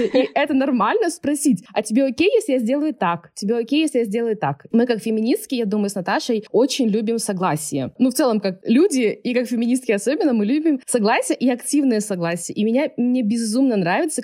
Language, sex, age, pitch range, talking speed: Russian, female, 20-39, 200-260 Hz, 200 wpm